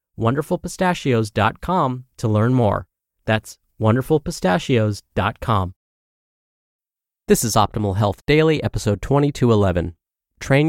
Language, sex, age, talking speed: English, male, 30-49, 80 wpm